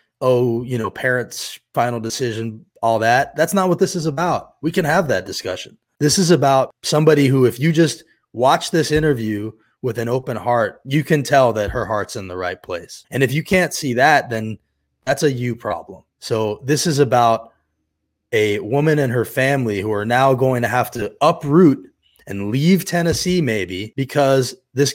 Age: 20-39